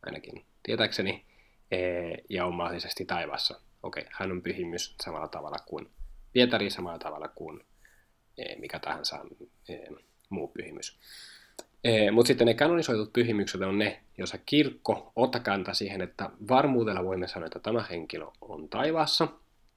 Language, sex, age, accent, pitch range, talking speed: Finnish, male, 20-39, native, 90-115 Hz, 125 wpm